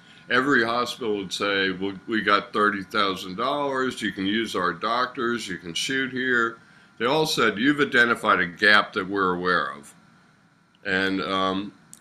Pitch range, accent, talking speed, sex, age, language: 100-130 Hz, American, 150 wpm, male, 60-79, English